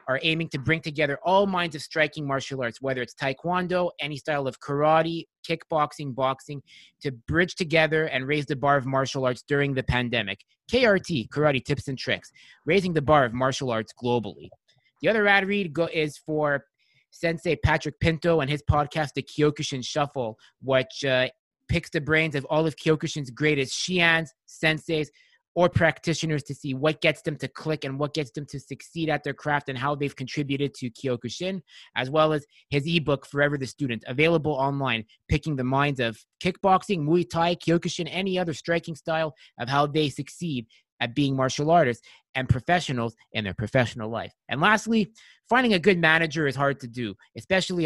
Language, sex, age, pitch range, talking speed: English, male, 20-39, 130-165 Hz, 180 wpm